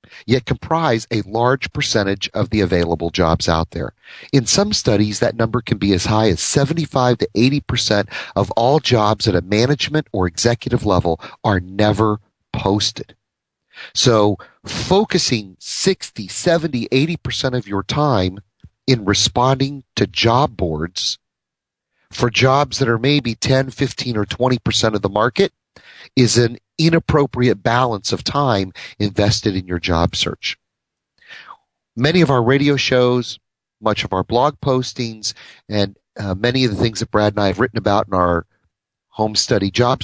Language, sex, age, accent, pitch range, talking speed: English, male, 40-59, American, 100-135 Hz, 150 wpm